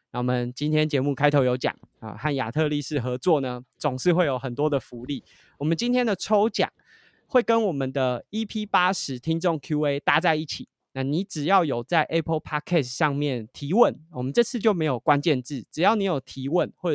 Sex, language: male, Chinese